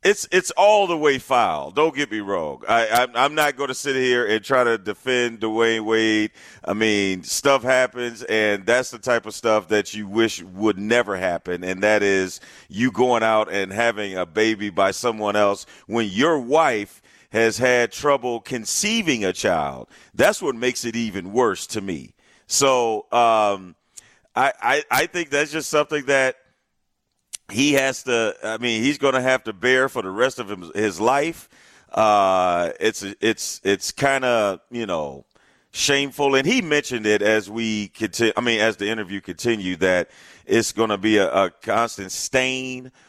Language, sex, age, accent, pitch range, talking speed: English, male, 40-59, American, 105-125 Hz, 180 wpm